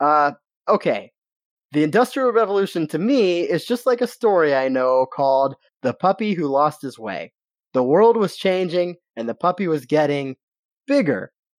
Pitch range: 140-205 Hz